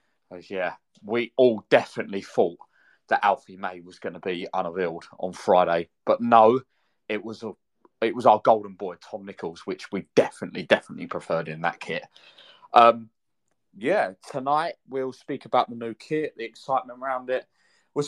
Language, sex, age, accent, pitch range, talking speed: English, male, 20-39, British, 105-125 Hz, 160 wpm